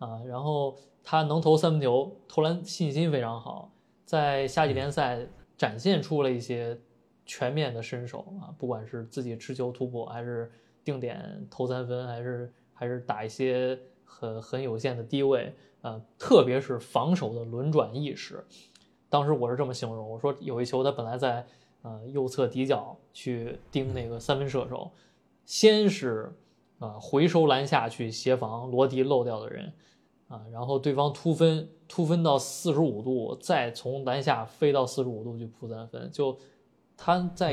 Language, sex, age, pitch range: Chinese, male, 20-39, 120-150 Hz